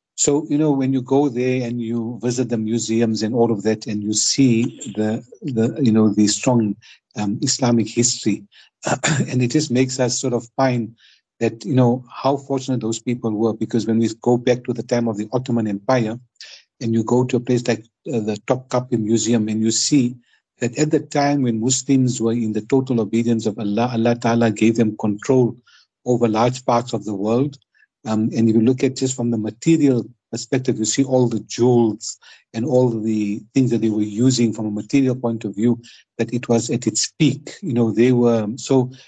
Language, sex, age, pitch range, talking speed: English, male, 60-79, 110-125 Hz, 210 wpm